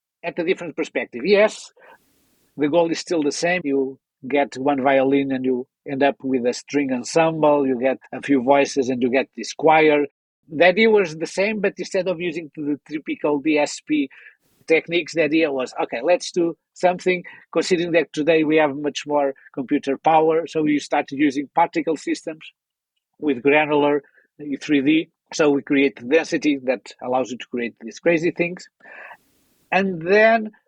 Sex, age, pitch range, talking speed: male, 50-69, 140-170 Hz, 165 wpm